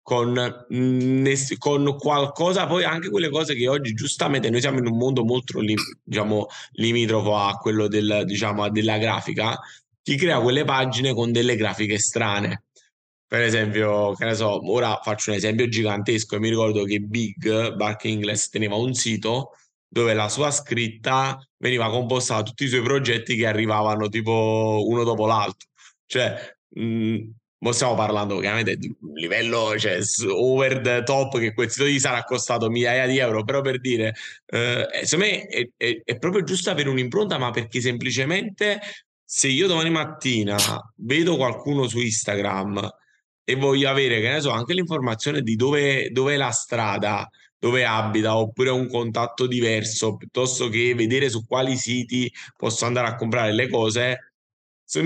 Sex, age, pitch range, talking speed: male, 20-39, 110-130 Hz, 155 wpm